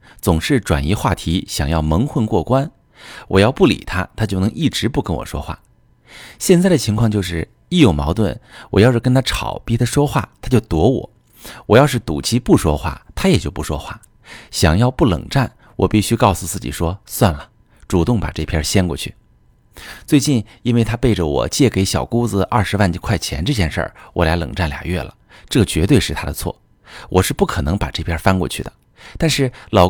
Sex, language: male, Chinese